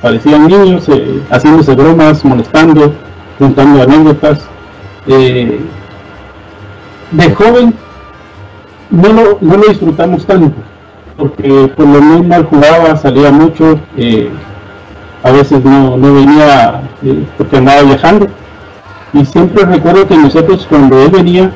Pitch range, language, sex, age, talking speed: 100-155 Hz, Spanish, male, 40-59, 115 wpm